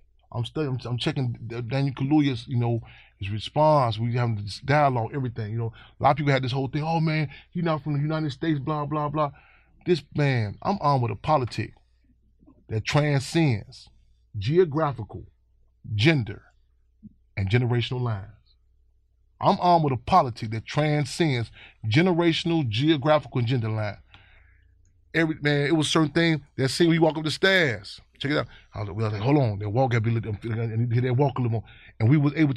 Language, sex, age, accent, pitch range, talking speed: English, male, 30-49, American, 115-150 Hz, 175 wpm